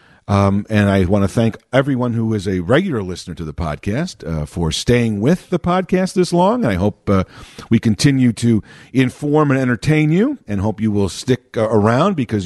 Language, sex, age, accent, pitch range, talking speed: English, male, 50-69, American, 100-160 Hz, 195 wpm